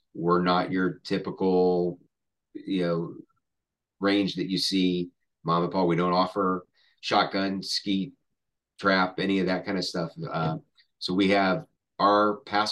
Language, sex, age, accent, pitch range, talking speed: English, male, 30-49, American, 90-100 Hz, 145 wpm